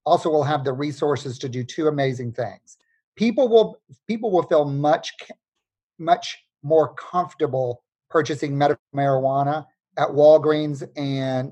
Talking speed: 130 wpm